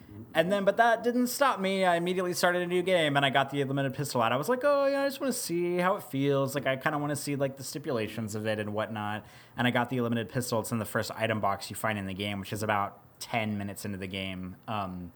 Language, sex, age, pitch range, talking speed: English, male, 30-49, 110-145 Hz, 290 wpm